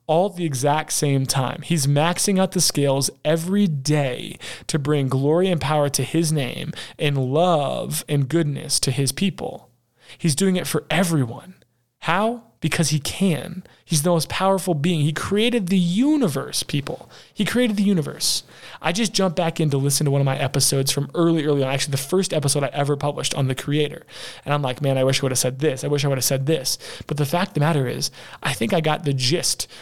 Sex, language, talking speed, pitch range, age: male, English, 215 wpm, 140-185 Hz, 20-39